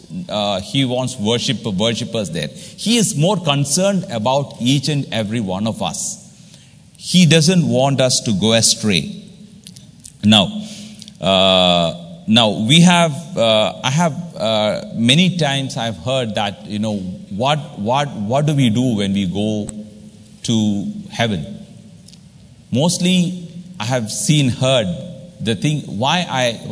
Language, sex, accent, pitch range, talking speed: English, male, Indian, 115-175 Hz, 135 wpm